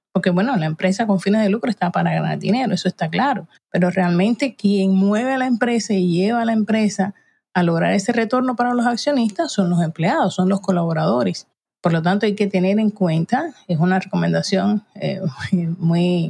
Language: Spanish